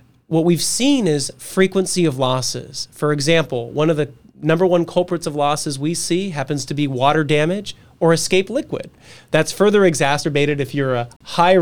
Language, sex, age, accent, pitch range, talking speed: English, male, 30-49, American, 135-170 Hz, 175 wpm